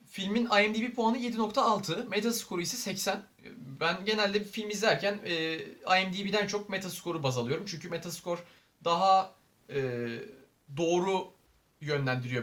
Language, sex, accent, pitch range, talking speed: Turkish, male, native, 130-195 Hz, 115 wpm